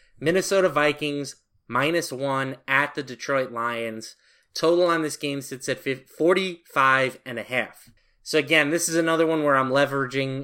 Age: 20-39